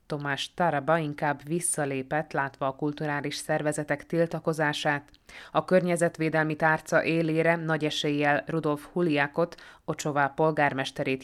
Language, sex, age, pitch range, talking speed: Hungarian, female, 20-39, 140-160 Hz, 100 wpm